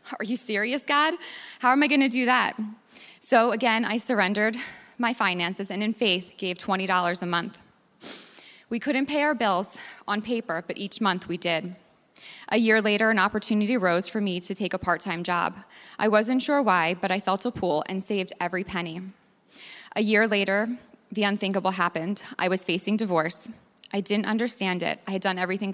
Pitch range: 185-225 Hz